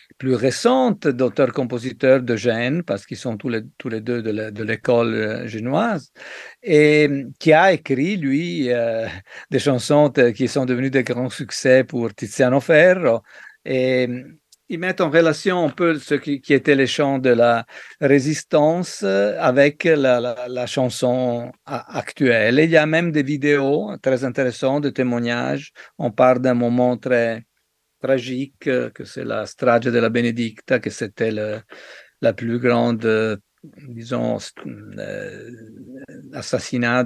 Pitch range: 110-135 Hz